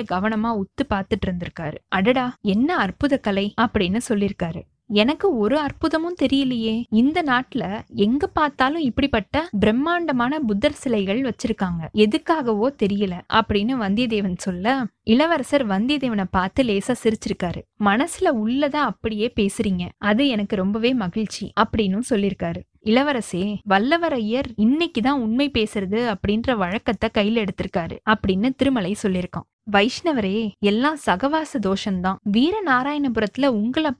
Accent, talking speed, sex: native, 90 wpm, female